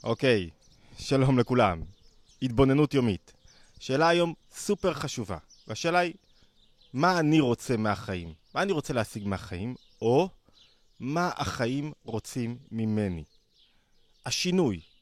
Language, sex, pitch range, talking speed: Hebrew, male, 110-145 Hz, 110 wpm